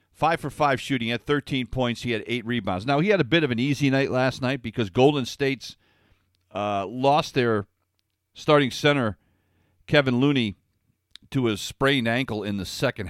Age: 50-69